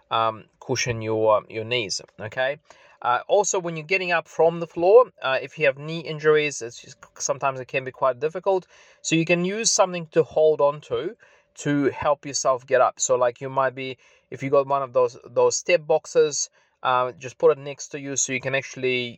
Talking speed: 210 wpm